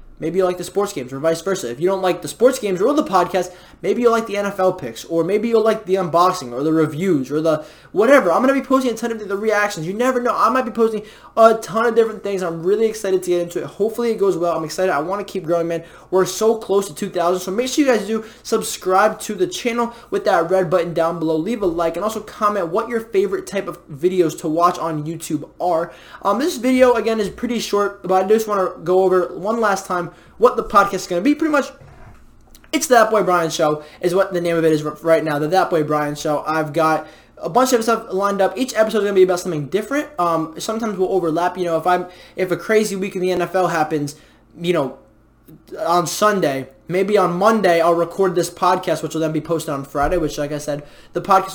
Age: 20-39